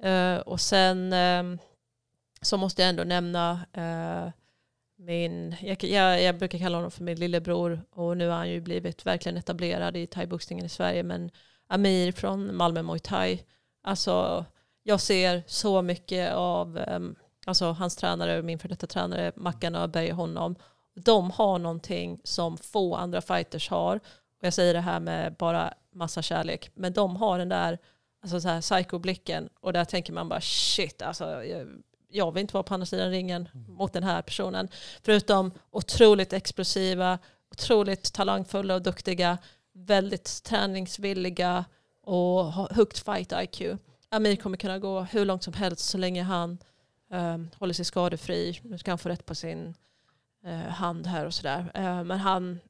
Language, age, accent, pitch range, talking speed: Swedish, 30-49, native, 165-190 Hz, 165 wpm